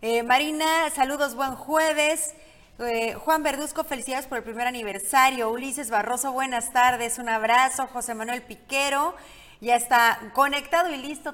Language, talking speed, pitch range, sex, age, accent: Spanish, 145 wpm, 225-270 Hz, female, 30-49, Mexican